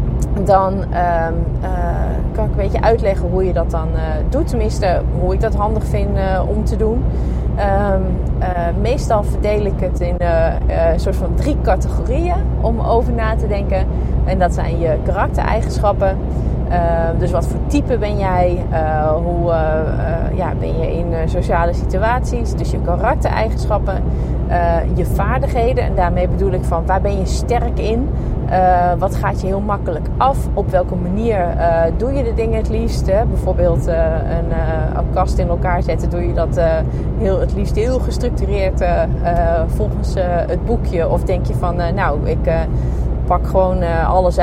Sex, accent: female, Dutch